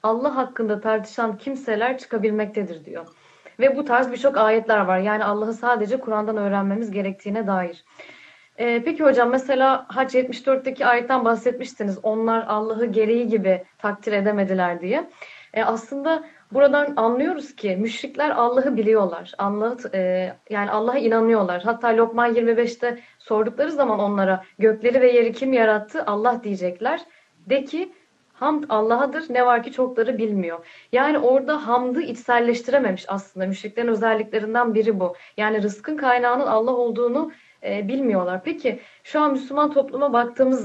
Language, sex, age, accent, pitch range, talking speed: Turkish, female, 30-49, native, 210-260 Hz, 135 wpm